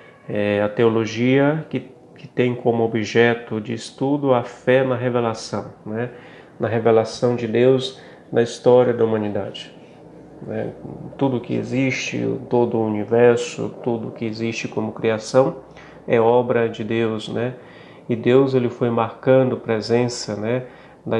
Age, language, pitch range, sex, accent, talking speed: 40-59, Portuguese, 110-125 Hz, male, Brazilian, 135 wpm